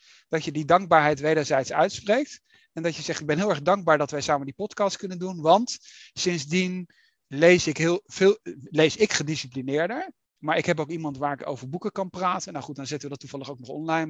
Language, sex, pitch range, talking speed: Dutch, male, 150-190 Hz, 220 wpm